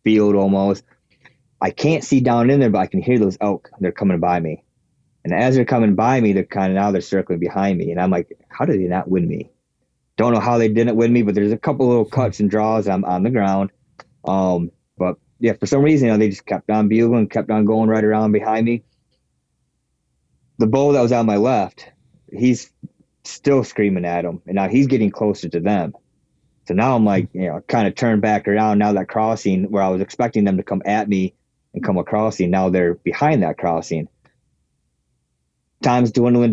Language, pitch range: English, 95-115 Hz